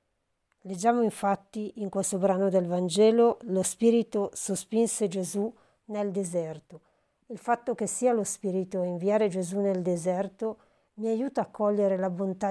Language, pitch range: Italian, 190-220 Hz